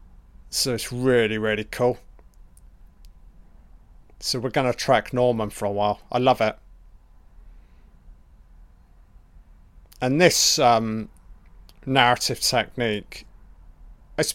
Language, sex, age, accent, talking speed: English, male, 30-49, British, 90 wpm